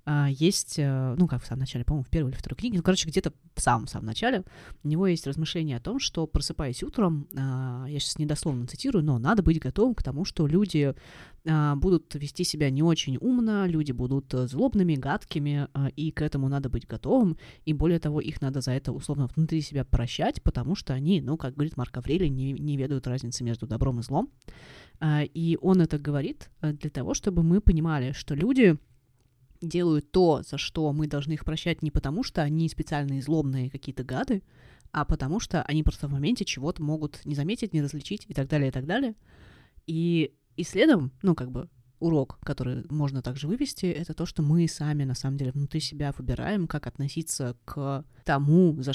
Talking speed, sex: 190 wpm, female